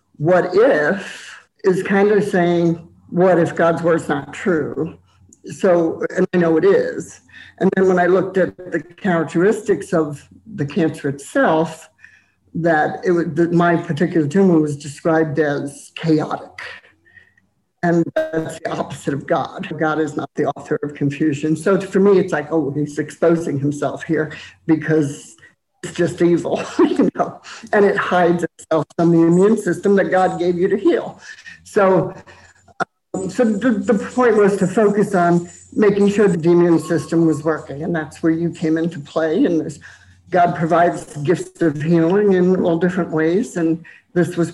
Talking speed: 165 wpm